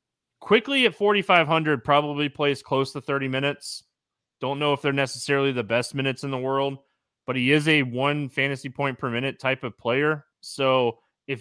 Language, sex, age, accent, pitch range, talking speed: English, male, 20-39, American, 115-145 Hz, 190 wpm